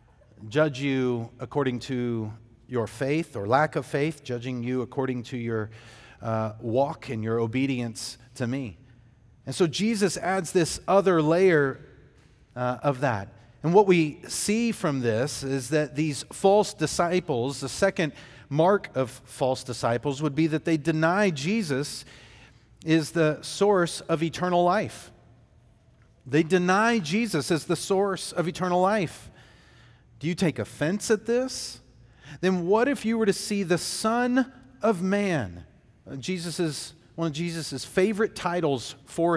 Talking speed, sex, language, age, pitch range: 145 wpm, male, English, 40-59, 120-175 Hz